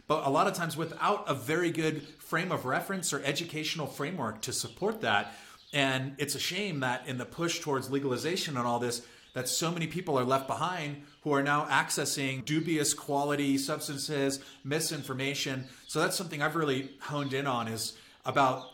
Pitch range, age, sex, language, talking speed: 130-155 Hz, 30-49, male, English, 180 wpm